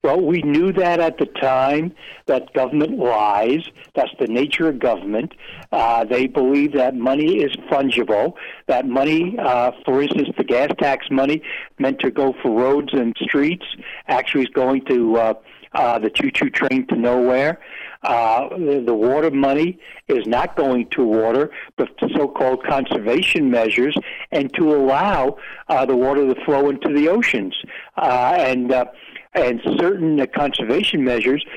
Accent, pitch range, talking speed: American, 125-145 Hz, 155 wpm